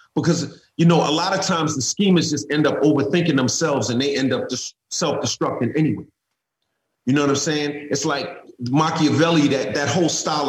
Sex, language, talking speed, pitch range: male, English, 190 wpm, 140-175 Hz